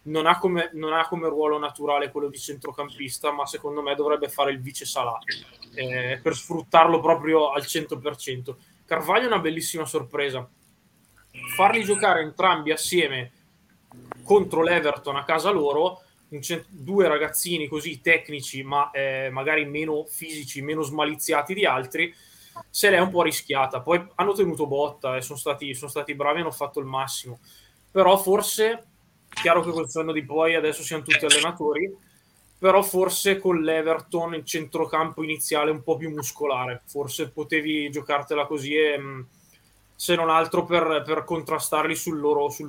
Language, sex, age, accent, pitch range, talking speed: Italian, male, 20-39, native, 145-165 Hz, 155 wpm